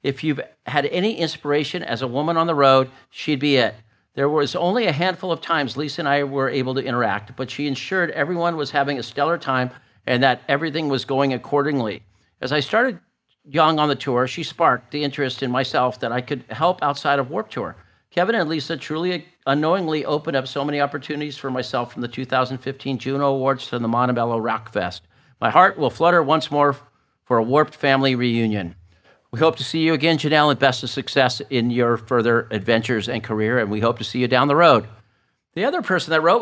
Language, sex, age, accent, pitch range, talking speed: English, male, 50-69, American, 125-155 Hz, 210 wpm